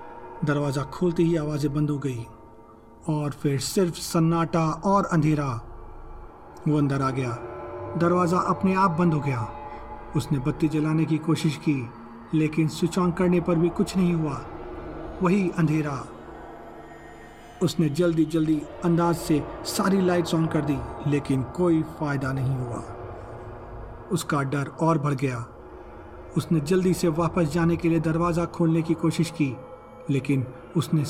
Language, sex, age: Hindi, male, 40-59